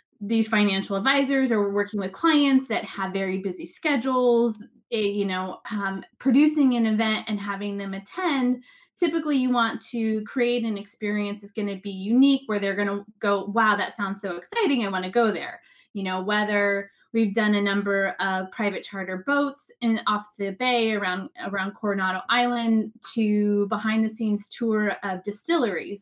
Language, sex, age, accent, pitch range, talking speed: English, female, 20-39, American, 200-240 Hz, 175 wpm